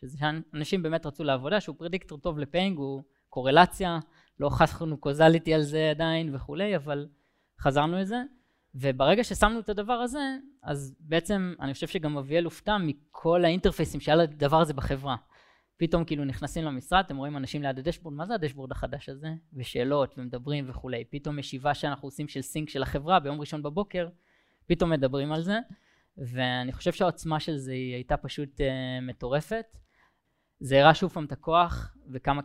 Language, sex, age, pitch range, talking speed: Hebrew, female, 20-39, 135-165 Hz, 160 wpm